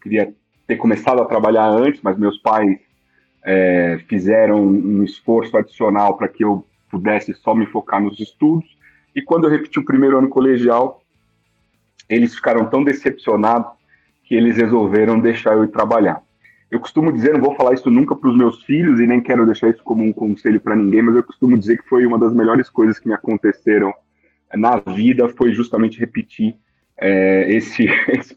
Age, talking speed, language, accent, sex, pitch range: 30-49, 180 wpm, Portuguese, Brazilian, male, 105-130 Hz